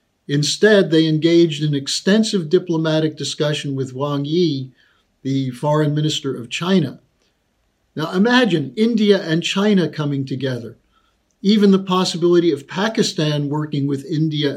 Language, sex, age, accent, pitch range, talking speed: English, male, 50-69, American, 140-190 Hz, 125 wpm